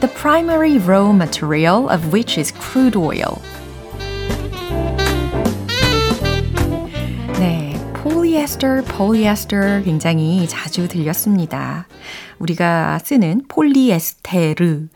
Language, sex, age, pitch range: Korean, female, 30-49, 160-245 Hz